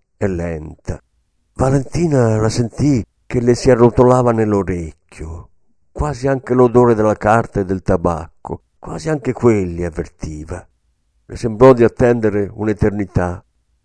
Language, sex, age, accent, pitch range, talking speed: Italian, male, 50-69, native, 85-130 Hz, 115 wpm